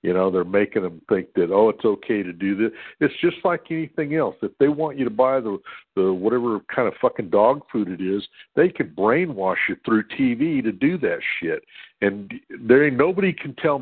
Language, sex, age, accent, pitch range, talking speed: English, male, 60-79, American, 105-155 Hz, 215 wpm